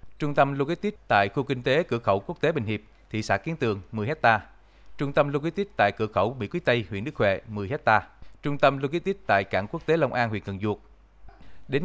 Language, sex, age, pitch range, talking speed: Vietnamese, male, 20-39, 105-140 Hz, 235 wpm